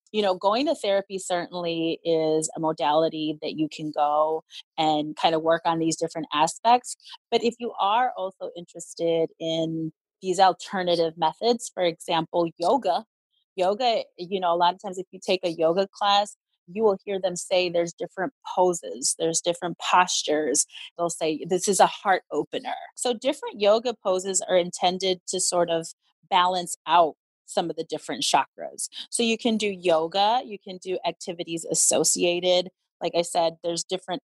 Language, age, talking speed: English, 30-49, 170 wpm